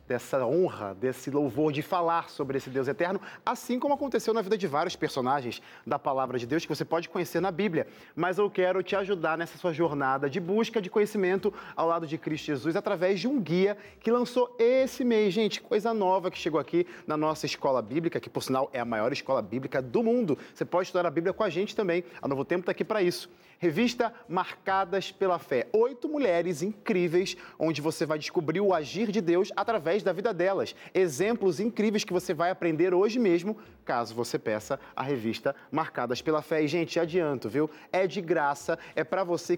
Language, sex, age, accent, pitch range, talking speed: Portuguese, male, 30-49, Brazilian, 160-210 Hz, 205 wpm